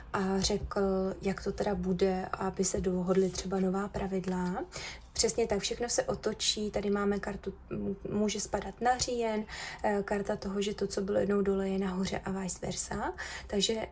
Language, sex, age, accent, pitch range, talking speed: Czech, female, 20-39, native, 190-220 Hz, 165 wpm